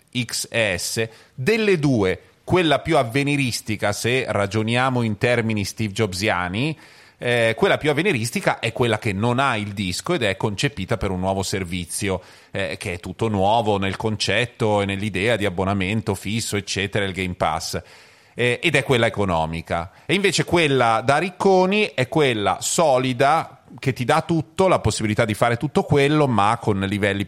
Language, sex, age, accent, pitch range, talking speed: Italian, male, 30-49, native, 100-130 Hz, 160 wpm